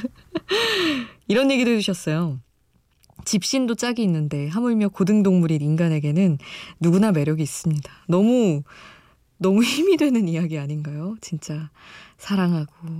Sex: female